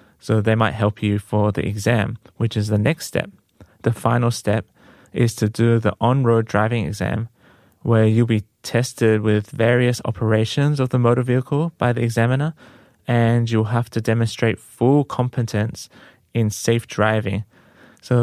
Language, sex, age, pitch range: Korean, male, 20-39, 105-120 Hz